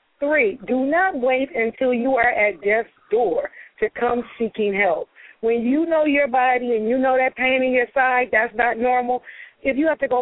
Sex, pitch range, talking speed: female, 220-265 Hz, 205 wpm